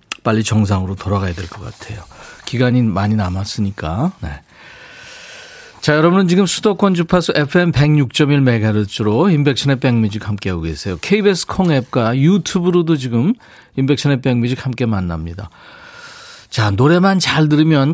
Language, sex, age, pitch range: Korean, male, 40-59, 105-155 Hz